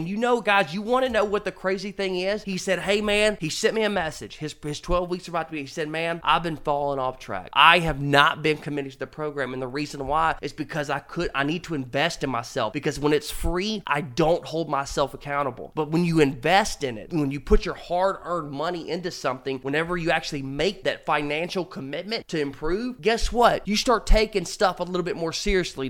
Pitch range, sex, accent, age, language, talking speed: 145-175 Hz, male, American, 20-39, English, 240 wpm